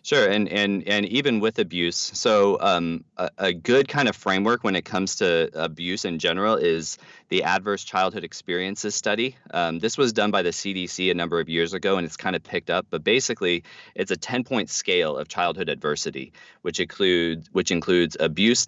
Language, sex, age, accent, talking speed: English, male, 30-49, American, 195 wpm